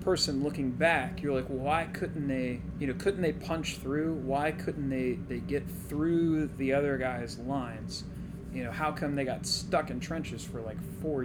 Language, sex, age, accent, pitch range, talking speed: English, male, 30-49, American, 130-155 Hz, 190 wpm